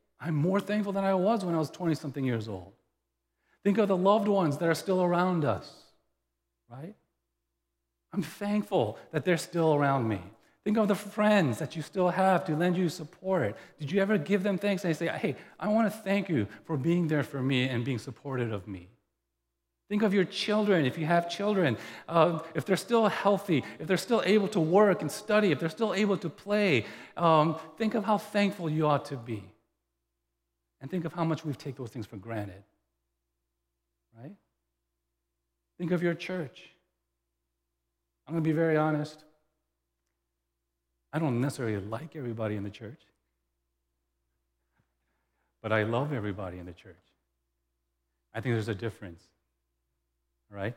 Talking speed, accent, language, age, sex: 175 wpm, American, English, 40-59, male